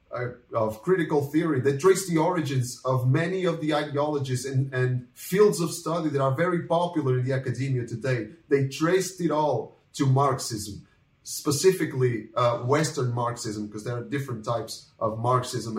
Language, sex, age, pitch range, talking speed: Portuguese, male, 30-49, 125-155 Hz, 160 wpm